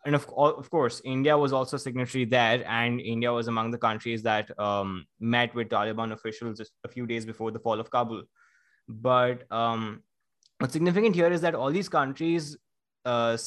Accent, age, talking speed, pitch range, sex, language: Indian, 20-39, 185 wpm, 110-135 Hz, male, English